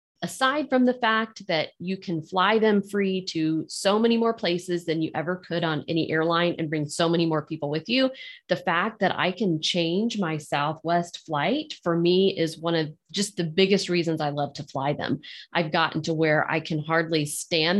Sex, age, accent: female, 30-49, American